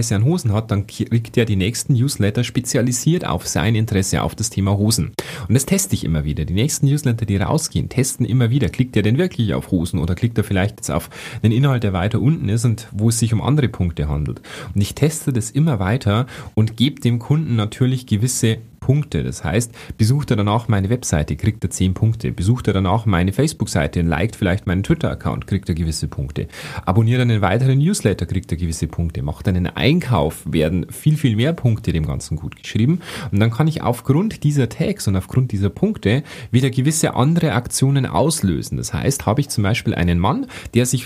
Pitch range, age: 100-140 Hz, 30-49